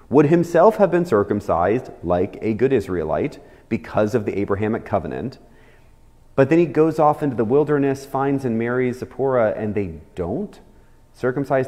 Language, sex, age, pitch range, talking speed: English, male, 30-49, 100-140 Hz, 155 wpm